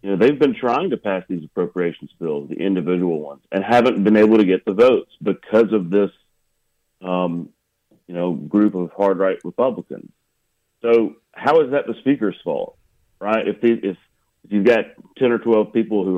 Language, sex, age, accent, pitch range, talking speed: English, male, 40-59, American, 90-110 Hz, 190 wpm